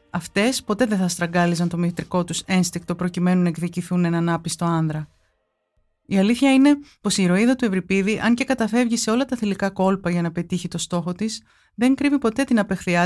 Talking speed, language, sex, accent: 195 wpm, Greek, female, native